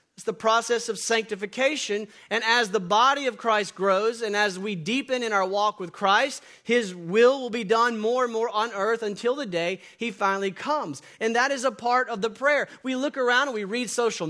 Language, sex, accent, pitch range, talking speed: English, male, American, 195-250 Hz, 220 wpm